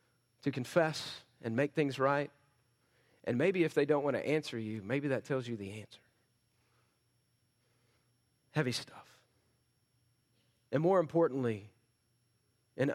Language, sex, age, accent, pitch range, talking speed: English, male, 40-59, American, 120-160 Hz, 125 wpm